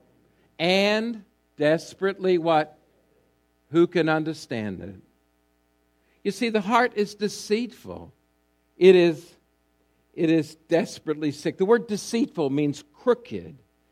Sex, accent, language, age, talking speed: male, American, English, 60-79, 105 wpm